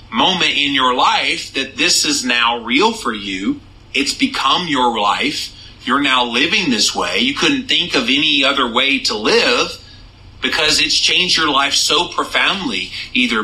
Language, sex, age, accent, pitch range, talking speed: English, male, 40-59, American, 140-210 Hz, 165 wpm